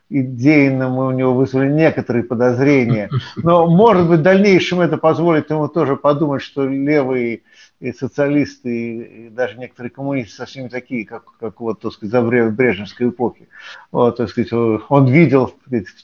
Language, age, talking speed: Russian, 50-69, 155 wpm